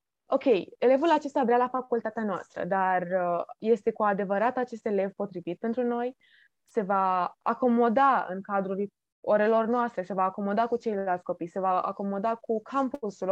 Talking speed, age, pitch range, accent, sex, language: 155 wpm, 20-39, 200-275 Hz, native, female, Romanian